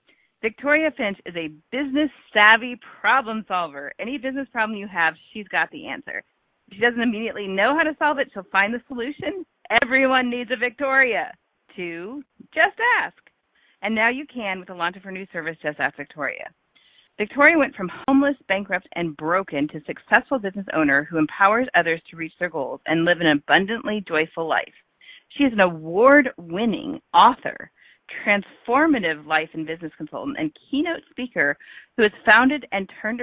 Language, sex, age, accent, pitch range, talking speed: English, female, 40-59, American, 170-265 Hz, 165 wpm